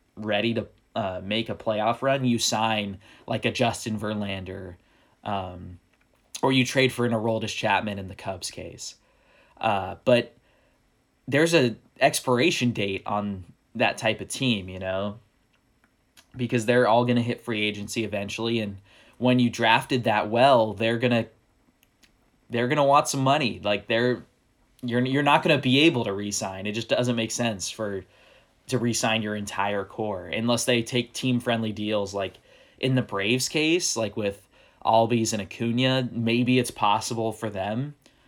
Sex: male